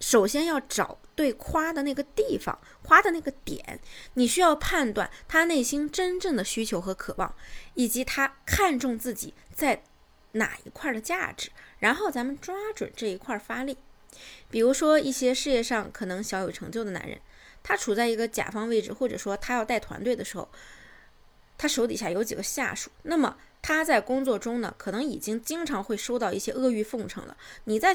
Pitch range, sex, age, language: 220-275 Hz, female, 20-39, Chinese